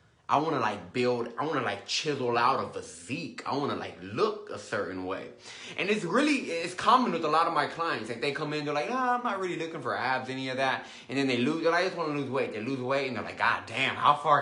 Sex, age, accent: male, 20-39, American